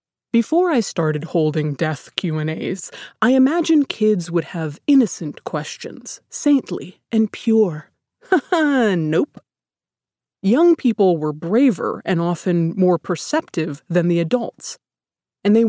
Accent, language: American, English